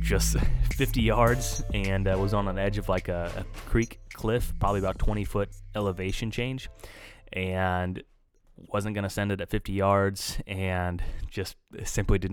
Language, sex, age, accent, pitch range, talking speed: English, male, 20-39, American, 90-105 Hz, 165 wpm